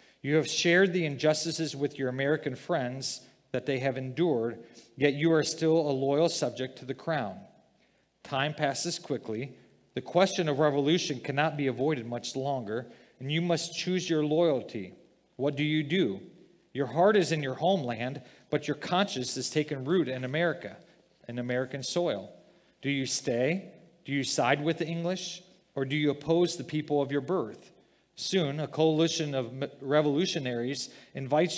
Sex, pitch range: male, 130-165 Hz